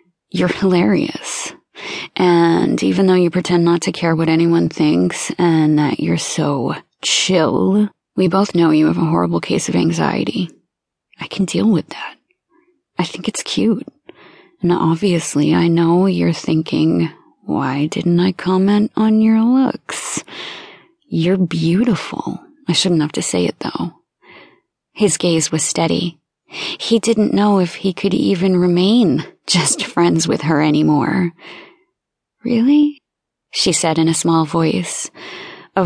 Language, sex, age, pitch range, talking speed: English, female, 30-49, 170-225 Hz, 140 wpm